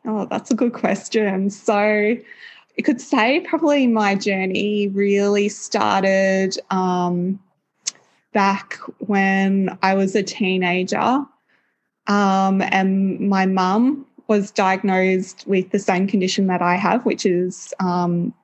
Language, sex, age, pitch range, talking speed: English, female, 20-39, 190-225 Hz, 120 wpm